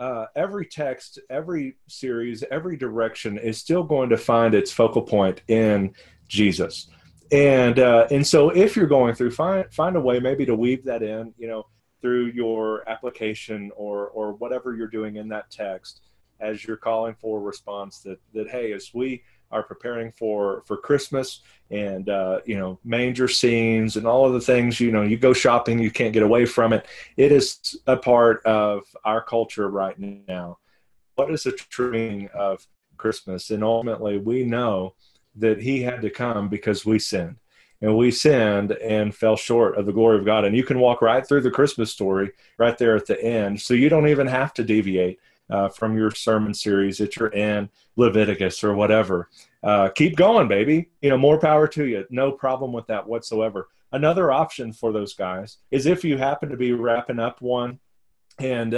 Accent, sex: American, male